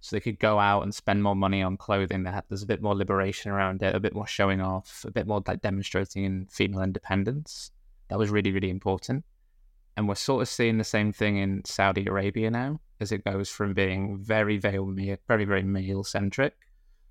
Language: English